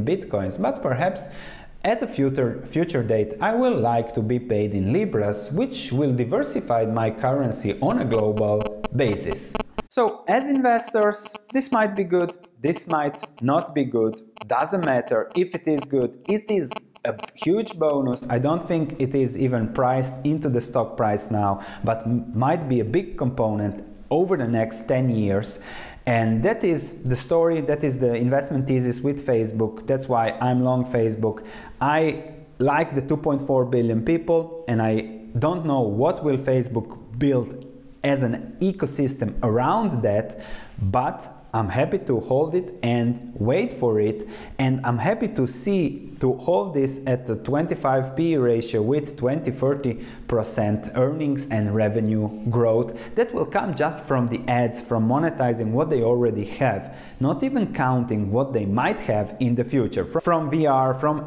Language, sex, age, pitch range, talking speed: English, male, 30-49, 115-150 Hz, 160 wpm